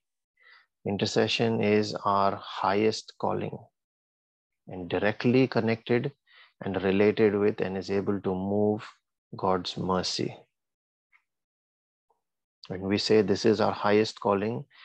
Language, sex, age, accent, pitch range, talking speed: English, male, 30-49, Indian, 100-115 Hz, 105 wpm